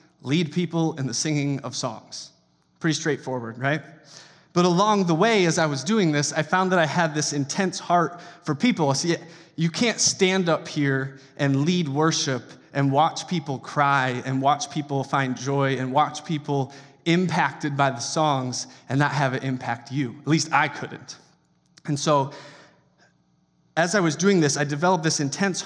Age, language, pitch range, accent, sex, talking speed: 20-39, English, 135-165 Hz, American, male, 175 wpm